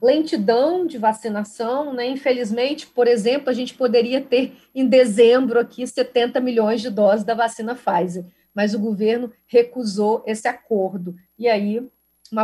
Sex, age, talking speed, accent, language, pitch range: female, 40-59, 145 wpm, Brazilian, Portuguese, 210-275 Hz